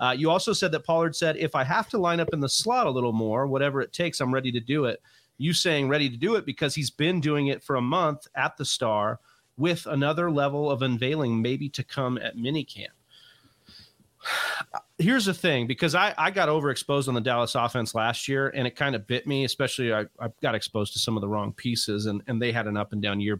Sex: male